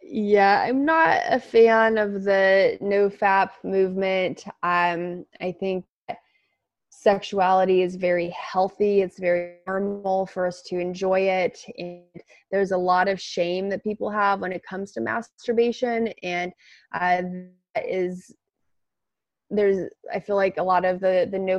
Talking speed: 145 wpm